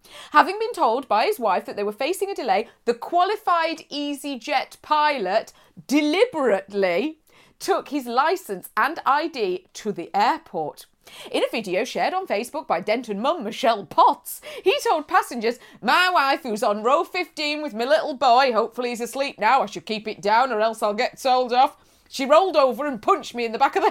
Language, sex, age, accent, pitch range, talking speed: English, female, 30-49, British, 220-325 Hz, 190 wpm